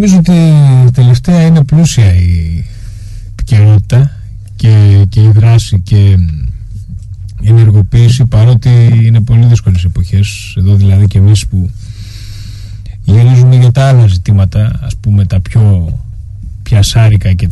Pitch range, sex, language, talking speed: 100-125 Hz, male, Greek, 120 wpm